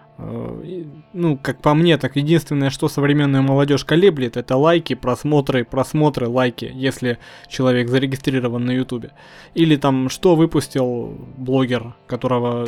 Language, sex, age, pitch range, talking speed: Russian, male, 20-39, 130-160 Hz, 125 wpm